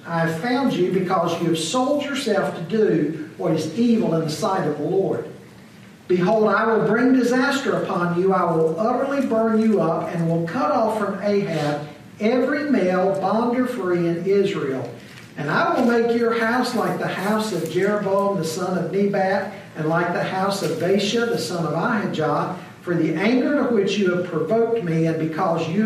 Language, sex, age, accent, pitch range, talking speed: English, male, 50-69, American, 165-220 Hz, 190 wpm